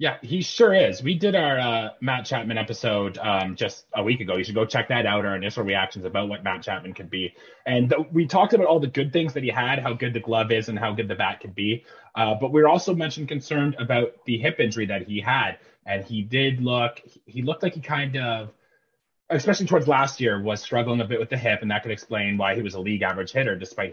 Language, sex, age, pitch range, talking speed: English, male, 30-49, 110-155 Hz, 255 wpm